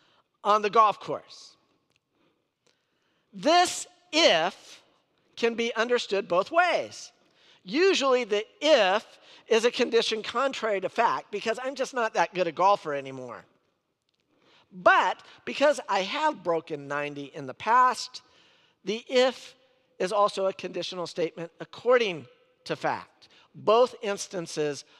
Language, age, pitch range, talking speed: English, 50-69, 170-255 Hz, 120 wpm